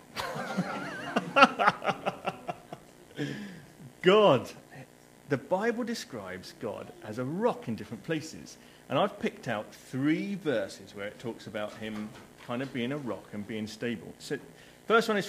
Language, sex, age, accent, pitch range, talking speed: English, male, 40-59, British, 105-150 Hz, 135 wpm